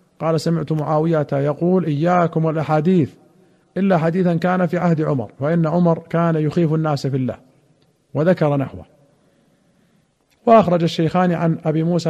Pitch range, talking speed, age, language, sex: 150-170 Hz, 130 wpm, 40-59, Arabic, male